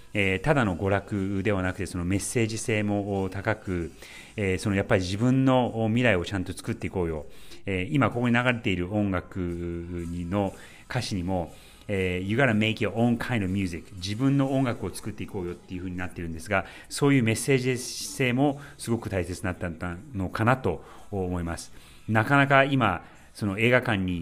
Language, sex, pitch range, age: Japanese, male, 90-115 Hz, 30-49